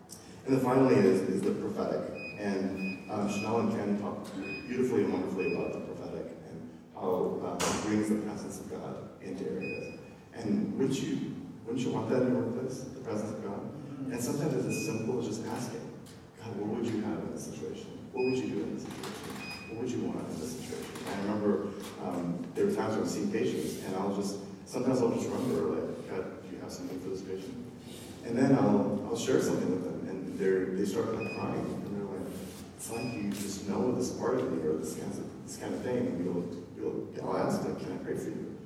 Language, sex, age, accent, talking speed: English, male, 40-59, American, 225 wpm